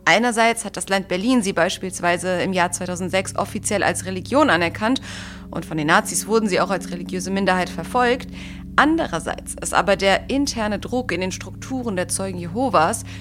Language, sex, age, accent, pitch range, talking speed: English, female, 30-49, German, 160-225 Hz, 170 wpm